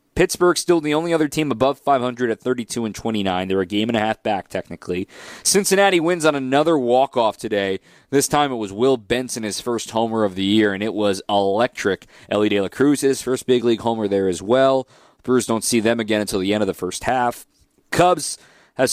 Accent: American